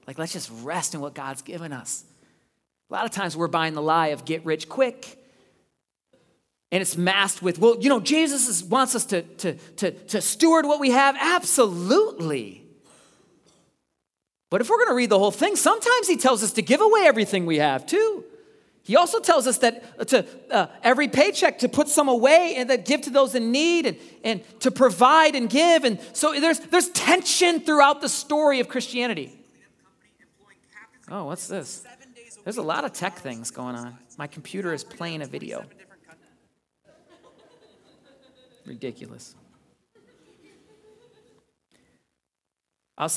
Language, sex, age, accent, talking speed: English, male, 40-59, American, 160 wpm